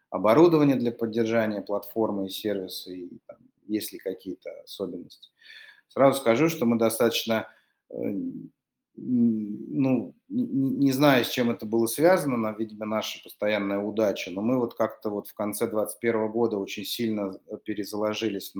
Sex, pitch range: male, 105-120 Hz